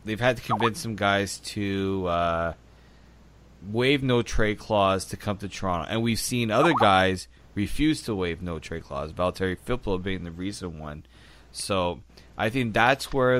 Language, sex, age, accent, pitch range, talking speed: English, male, 20-39, American, 90-110 Hz, 170 wpm